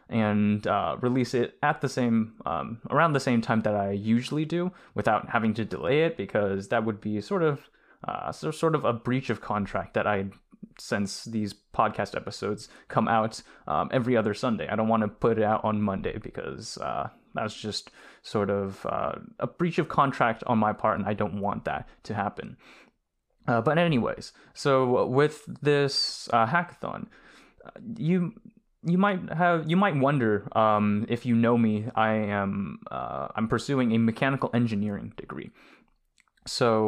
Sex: male